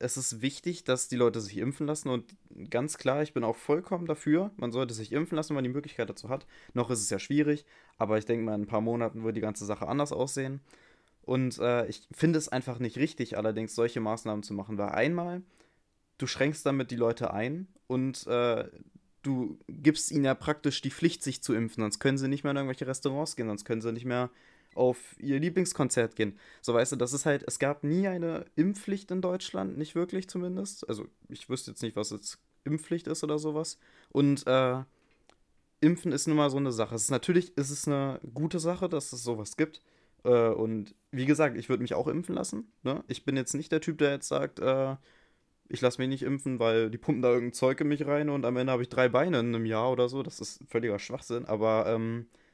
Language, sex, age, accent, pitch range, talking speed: German, male, 20-39, German, 115-150 Hz, 225 wpm